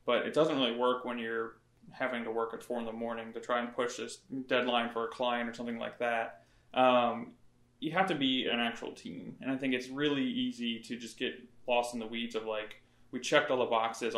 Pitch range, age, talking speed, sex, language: 115-125 Hz, 20-39, 235 wpm, male, English